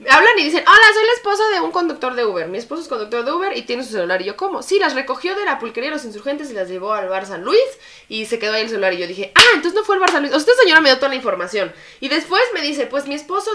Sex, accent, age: female, Mexican, 20-39